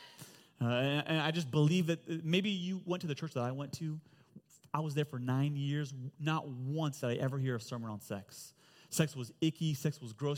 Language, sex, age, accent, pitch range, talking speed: English, male, 30-49, American, 125-160 Hz, 225 wpm